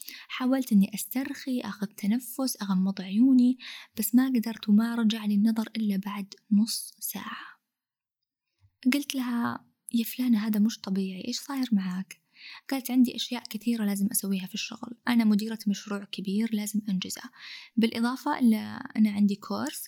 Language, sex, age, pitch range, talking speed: Arabic, female, 20-39, 200-250 Hz, 140 wpm